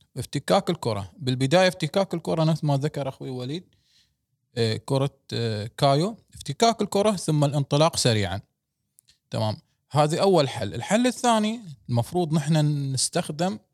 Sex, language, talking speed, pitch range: male, Arabic, 120 wpm, 130-175 Hz